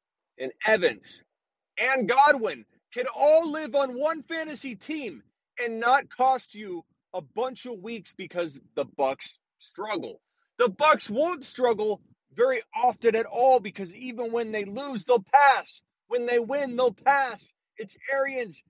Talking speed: 145 wpm